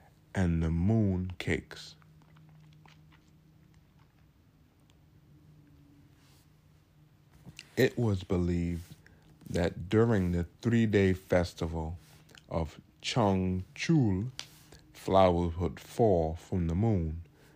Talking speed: 70 wpm